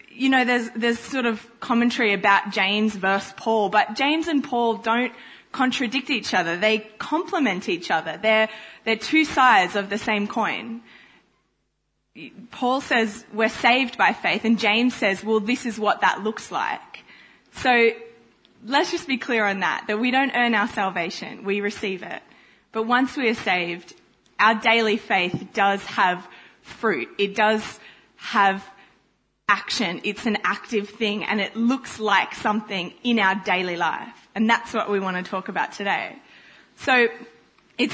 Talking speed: 160 wpm